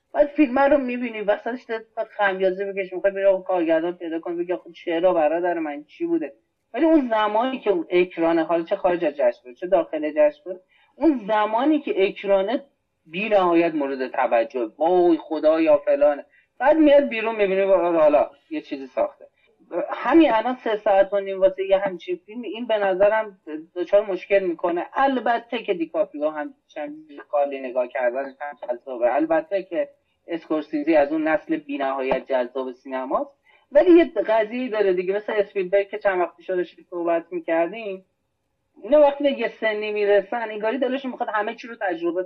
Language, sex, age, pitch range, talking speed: Persian, male, 30-49, 180-290 Hz, 160 wpm